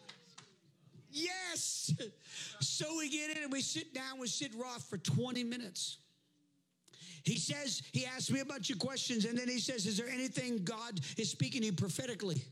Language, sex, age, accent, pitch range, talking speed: English, male, 50-69, American, 155-205 Hz, 175 wpm